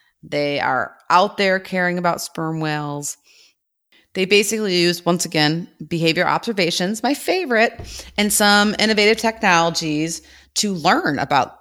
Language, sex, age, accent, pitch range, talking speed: English, female, 30-49, American, 145-190 Hz, 125 wpm